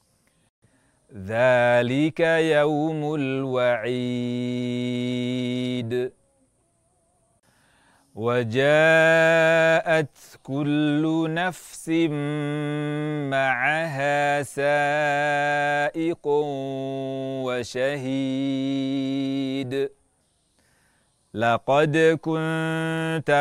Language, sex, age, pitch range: Indonesian, male, 40-59, 135-160 Hz